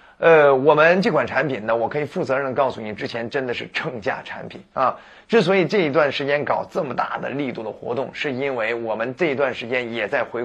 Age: 30-49